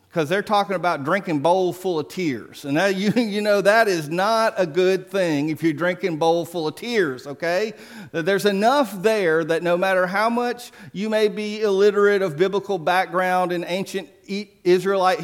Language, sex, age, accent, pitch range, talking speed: English, male, 40-59, American, 155-205 Hz, 180 wpm